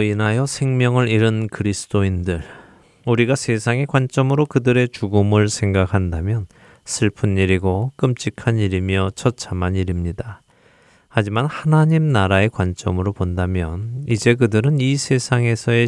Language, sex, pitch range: Korean, male, 95-130 Hz